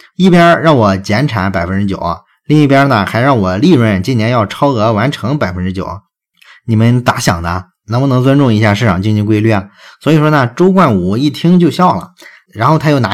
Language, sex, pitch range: Chinese, male, 95-135 Hz